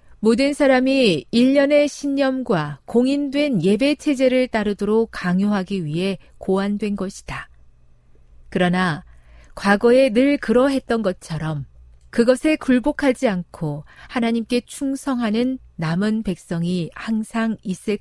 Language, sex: Korean, female